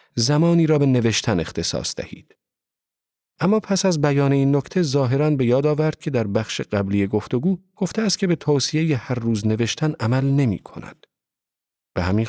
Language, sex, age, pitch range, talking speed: Persian, male, 40-59, 105-150 Hz, 170 wpm